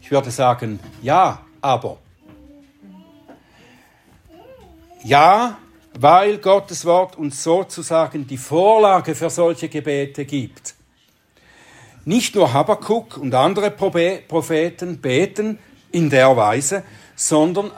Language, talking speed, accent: German, 100 wpm, German